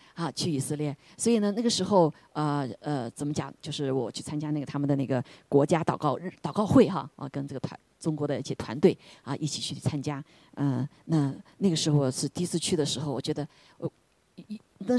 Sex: female